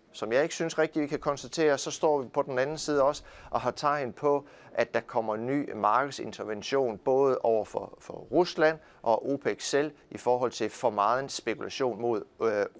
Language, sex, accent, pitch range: Danish, male, native, 120-155 Hz